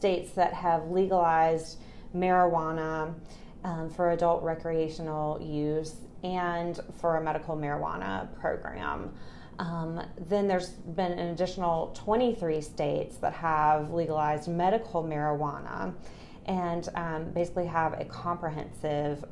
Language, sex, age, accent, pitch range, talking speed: English, female, 30-49, American, 155-185 Hz, 110 wpm